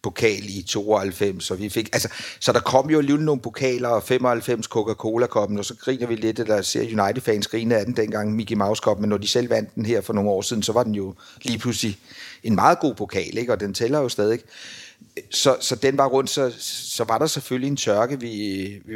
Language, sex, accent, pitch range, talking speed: Danish, male, native, 105-125 Hz, 225 wpm